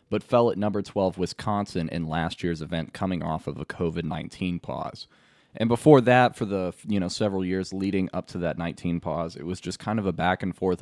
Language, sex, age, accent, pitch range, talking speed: English, male, 20-39, American, 85-105 Hz, 225 wpm